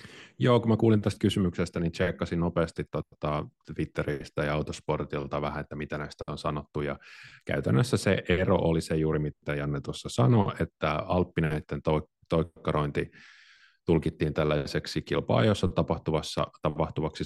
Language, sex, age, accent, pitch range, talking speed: Finnish, male, 30-49, native, 75-85 Hz, 130 wpm